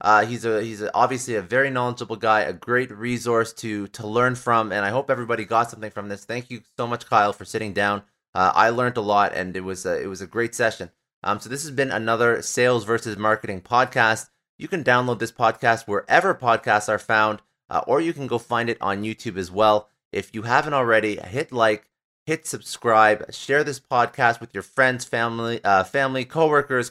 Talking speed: 205 wpm